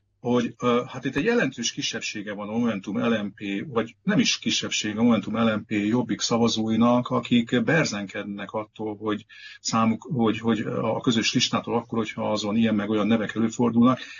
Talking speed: 150 wpm